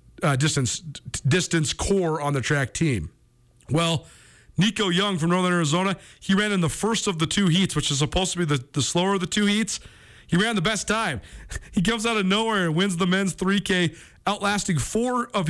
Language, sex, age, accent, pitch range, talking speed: English, male, 40-59, American, 130-180 Hz, 210 wpm